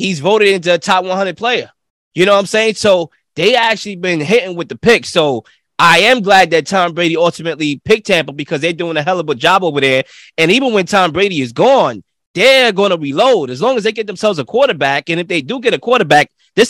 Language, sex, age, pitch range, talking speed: English, male, 20-39, 145-195 Hz, 240 wpm